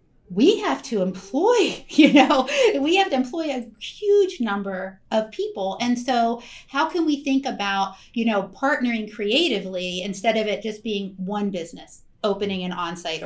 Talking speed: 165 wpm